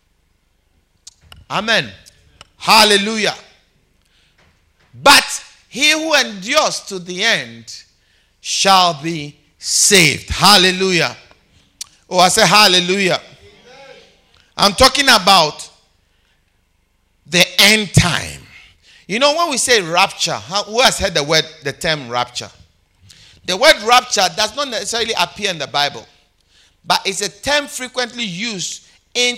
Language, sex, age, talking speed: English, male, 50-69, 110 wpm